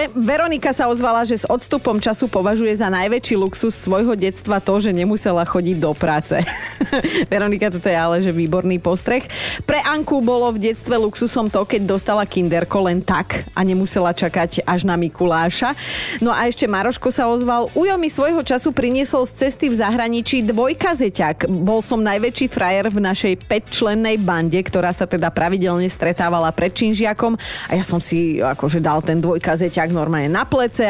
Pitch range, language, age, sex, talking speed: 180-240 Hz, Slovak, 30-49, female, 165 wpm